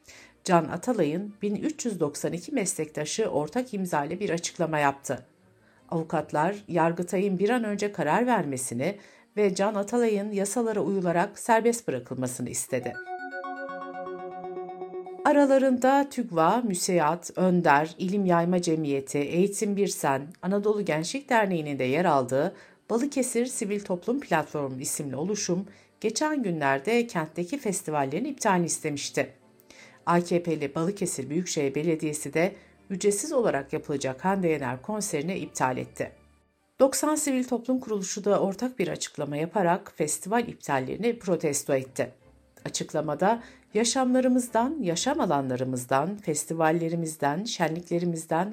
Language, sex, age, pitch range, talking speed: Turkish, female, 60-79, 150-215 Hz, 105 wpm